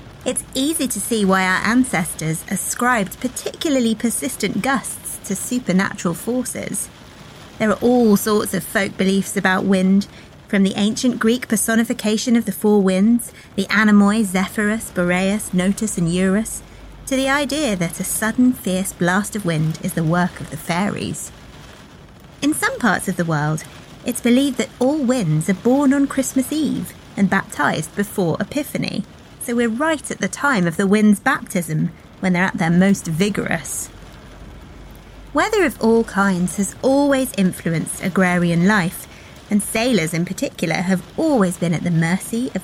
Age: 30-49